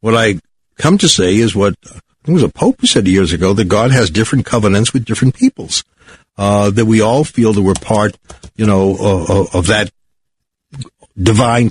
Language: English